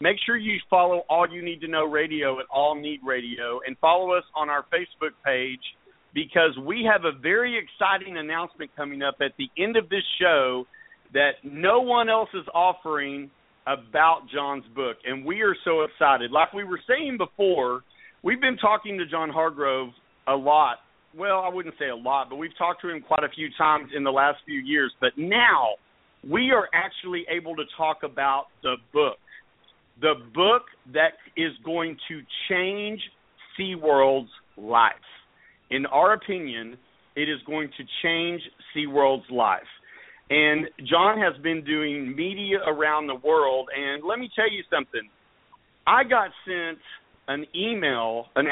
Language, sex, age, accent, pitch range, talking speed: English, male, 50-69, American, 140-190 Hz, 165 wpm